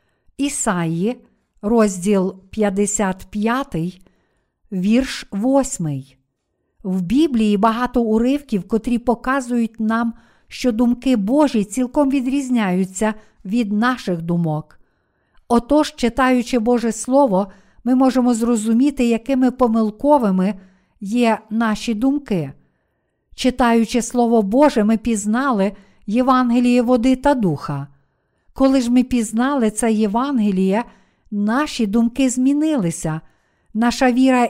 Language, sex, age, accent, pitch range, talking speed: Ukrainian, female, 50-69, native, 200-255 Hz, 90 wpm